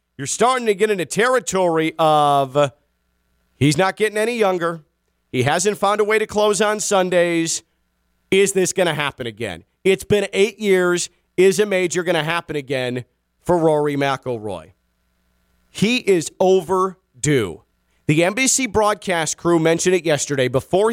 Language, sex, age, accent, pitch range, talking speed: English, male, 40-59, American, 140-190 Hz, 150 wpm